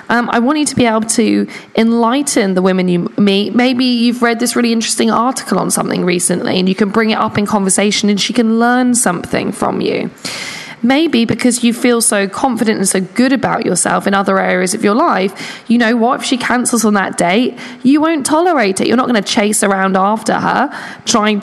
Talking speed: 215 wpm